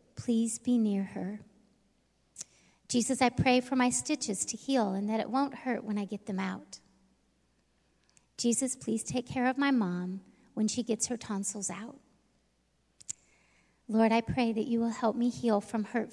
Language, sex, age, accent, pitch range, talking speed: English, female, 40-59, American, 210-245 Hz, 170 wpm